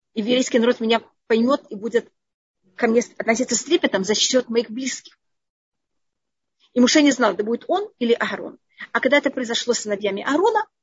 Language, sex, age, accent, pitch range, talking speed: Russian, female, 30-49, native, 215-275 Hz, 175 wpm